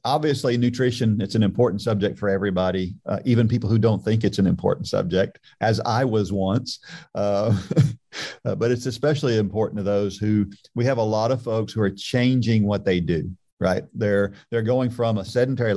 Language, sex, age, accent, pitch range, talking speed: English, male, 50-69, American, 95-120 Hz, 185 wpm